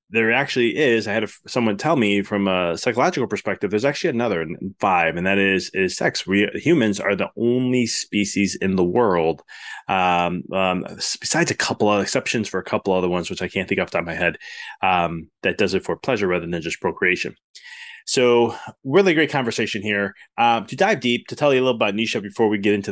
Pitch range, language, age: 95-115 Hz, English, 20-39